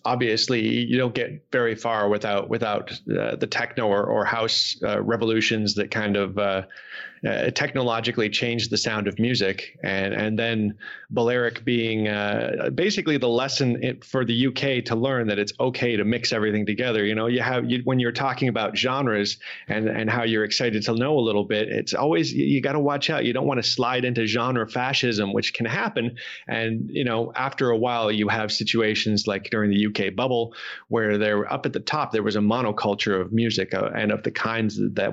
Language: English